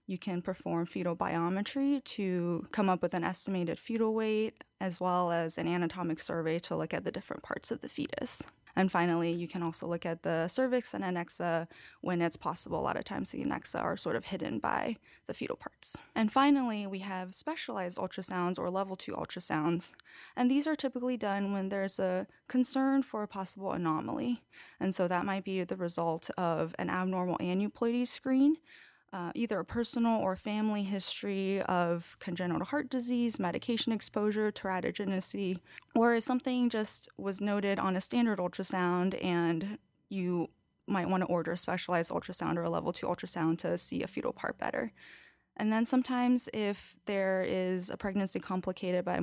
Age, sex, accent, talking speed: 20-39, female, American, 175 wpm